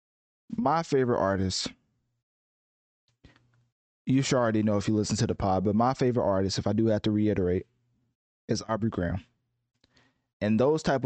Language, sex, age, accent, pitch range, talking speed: English, male, 20-39, American, 105-125 Hz, 155 wpm